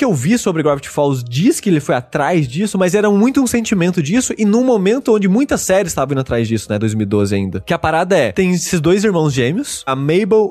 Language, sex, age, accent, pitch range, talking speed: Portuguese, male, 20-39, Brazilian, 150-210 Hz, 240 wpm